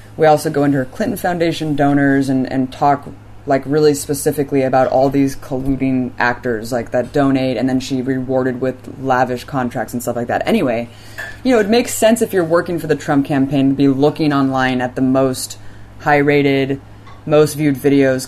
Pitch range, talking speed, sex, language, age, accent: 130-160 Hz, 190 wpm, female, English, 20-39, American